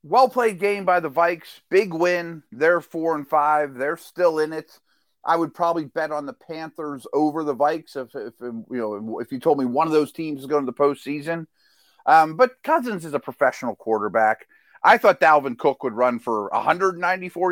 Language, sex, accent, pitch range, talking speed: English, male, American, 125-165 Hz, 200 wpm